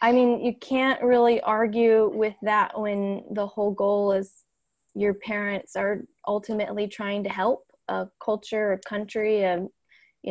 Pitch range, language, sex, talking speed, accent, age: 185-220 Hz, English, female, 150 wpm, American, 20-39